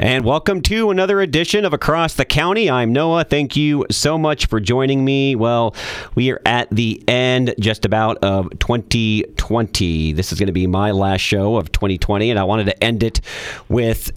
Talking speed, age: 190 wpm, 40-59